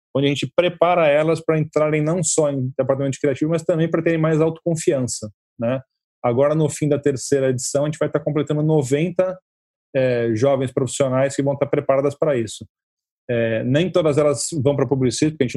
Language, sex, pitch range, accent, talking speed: Portuguese, male, 135-155 Hz, Brazilian, 185 wpm